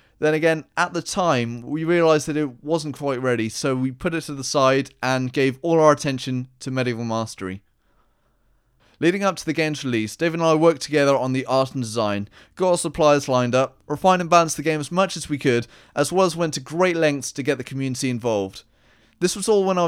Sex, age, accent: male, 30-49, British